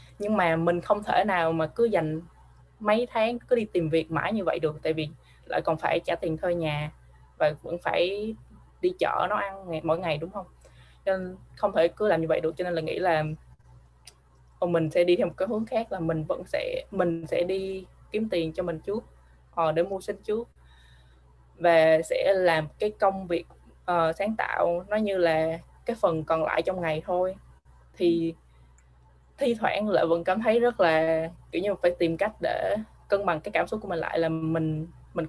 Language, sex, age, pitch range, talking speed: Vietnamese, female, 20-39, 155-195 Hz, 210 wpm